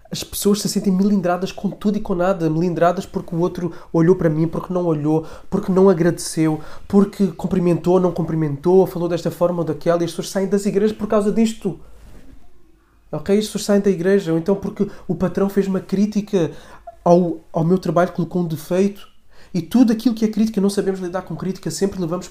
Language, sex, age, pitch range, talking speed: Portuguese, male, 20-39, 165-200 Hz, 200 wpm